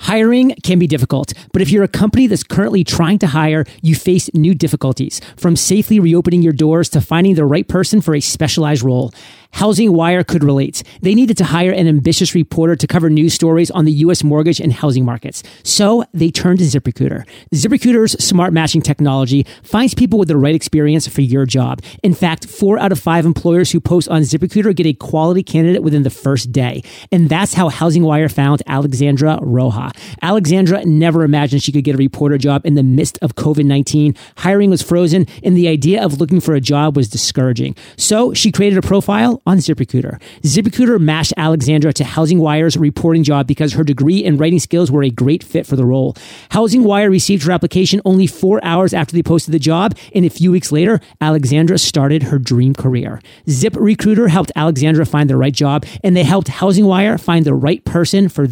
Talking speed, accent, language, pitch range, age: 200 wpm, American, English, 145-185 Hz, 30-49